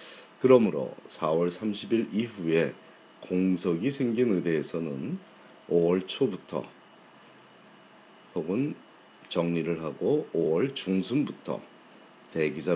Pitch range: 85-110 Hz